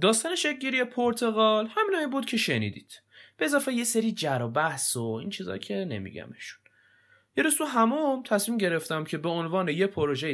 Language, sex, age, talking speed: Persian, male, 20-39, 155 wpm